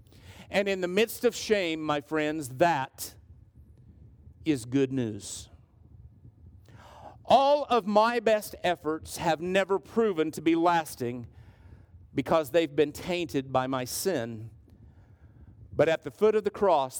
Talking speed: 130 wpm